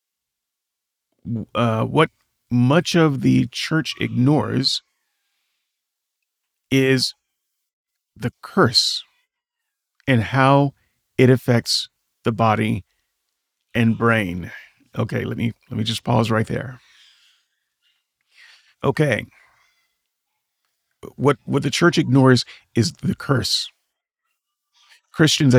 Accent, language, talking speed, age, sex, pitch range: American, English, 85 wpm, 40-59, male, 120-150 Hz